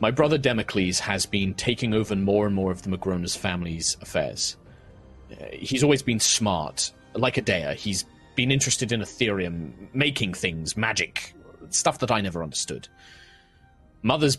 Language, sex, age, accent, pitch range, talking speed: English, male, 30-49, British, 95-125 Hz, 150 wpm